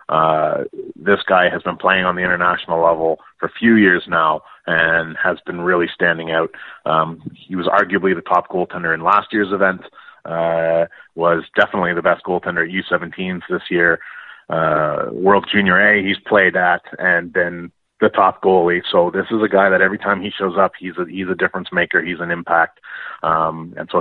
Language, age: English, 30-49